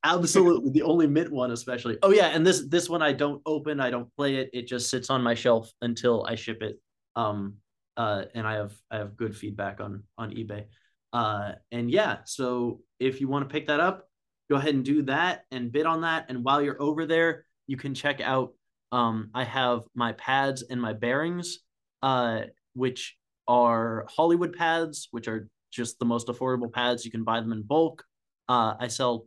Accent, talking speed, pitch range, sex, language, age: American, 205 wpm, 120-145 Hz, male, English, 20-39